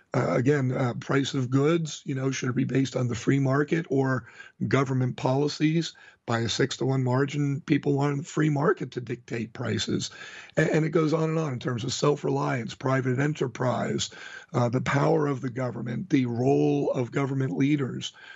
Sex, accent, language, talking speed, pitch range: male, American, English, 185 wpm, 125-145 Hz